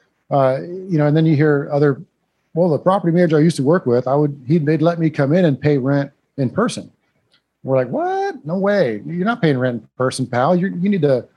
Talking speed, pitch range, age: 245 wpm, 125-155 Hz, 50-69